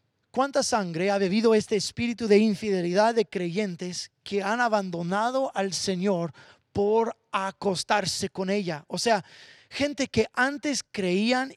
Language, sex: English, male